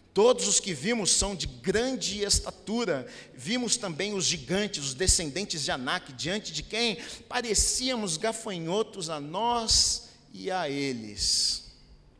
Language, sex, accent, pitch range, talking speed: Portuguese, male, Brazilian, 165-235 Hz, 130 wpm